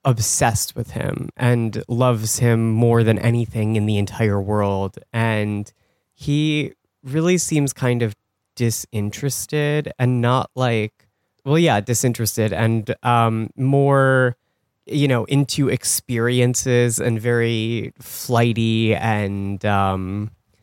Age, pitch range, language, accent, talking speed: 30-49, 110-130 Hz, English, American, 110 wpm